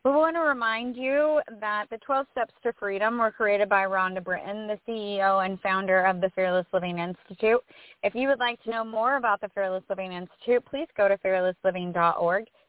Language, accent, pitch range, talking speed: English, American, 195-250 Hz, 195 wpm